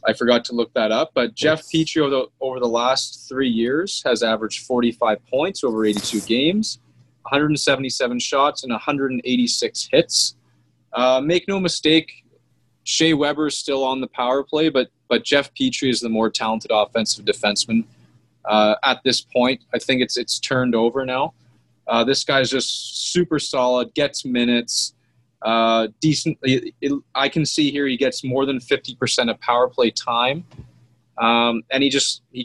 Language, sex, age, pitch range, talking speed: English, male, 20-39, 120-155 Hz, 165 wpm